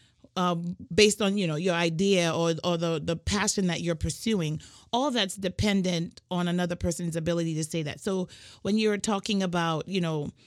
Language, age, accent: English, 30-49, American